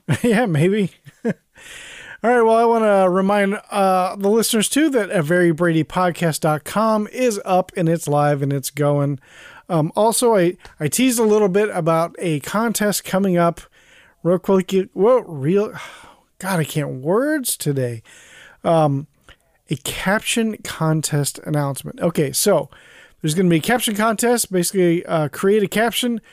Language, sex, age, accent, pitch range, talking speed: English, male, 40-59, American, 150-200 Hz, 150 wpm